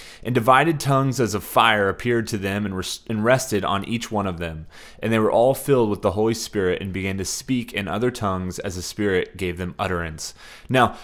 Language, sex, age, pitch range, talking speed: English, male, 20-39, 110-130 Hz, 215 wpm